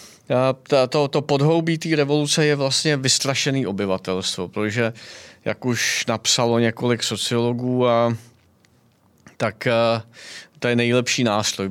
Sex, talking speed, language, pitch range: male, 115 wpm, Czech, 115-150 Hz